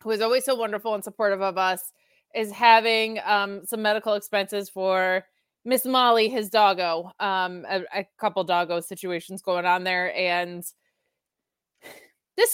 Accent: American